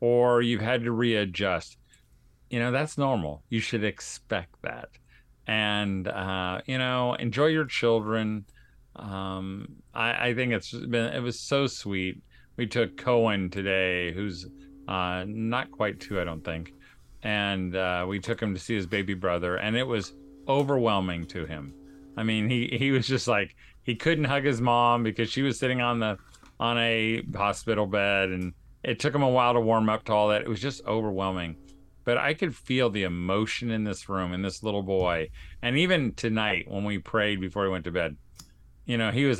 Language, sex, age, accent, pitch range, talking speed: English, male, 40-59, American, 90-120 Hz, 190 wpm